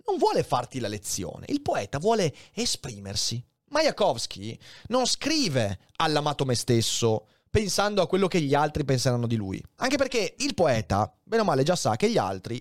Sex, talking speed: male, 170 wpm